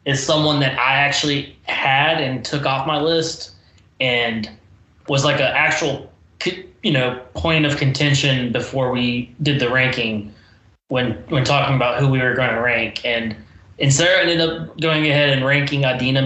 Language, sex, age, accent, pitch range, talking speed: English, male, 20-39, American, 110-140 Hz, 170 wpm